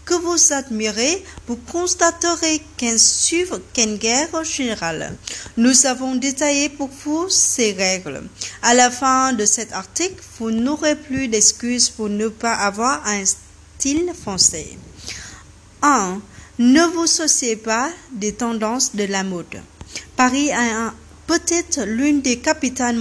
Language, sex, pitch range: French, female, 220-305 Hz